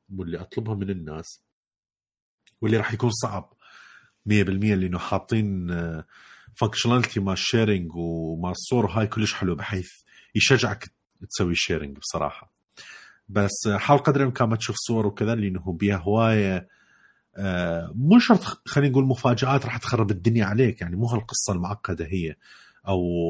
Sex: male